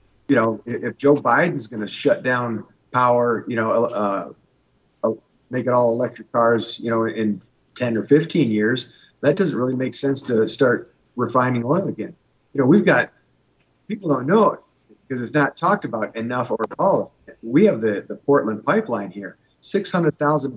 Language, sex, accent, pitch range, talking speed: English, male, American, 115-145 Hz, 180 wpm